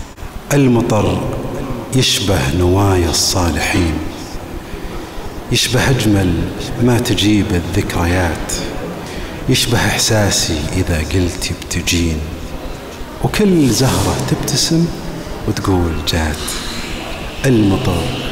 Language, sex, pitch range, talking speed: Arabic, male, 85-120 Hz, 65 wpm